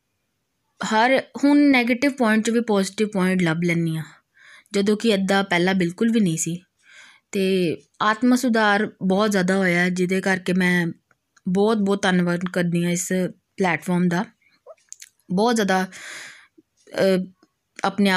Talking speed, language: 130 wpm, Punjabi